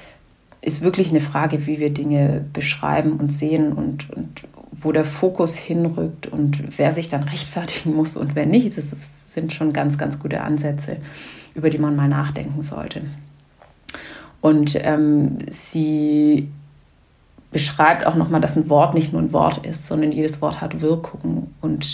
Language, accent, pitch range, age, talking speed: German, German, 145-155 Hz, 30-49, 165 wpm